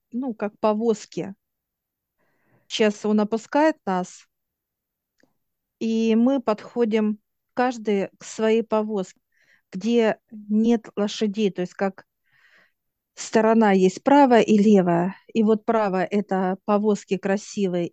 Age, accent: 40-59, native